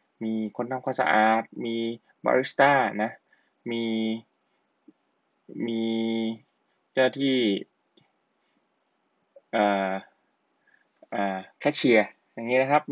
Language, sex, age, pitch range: Thai, male, 20-39, 110-130 Hz